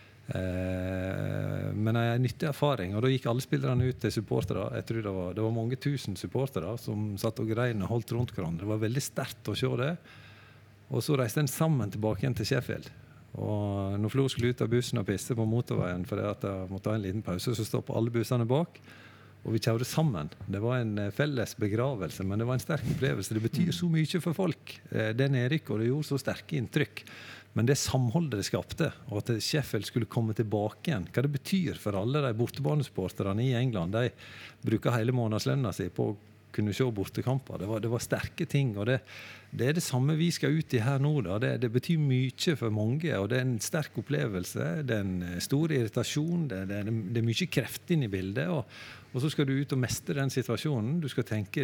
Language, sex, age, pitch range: English, male, 50-69, 105-140 Hz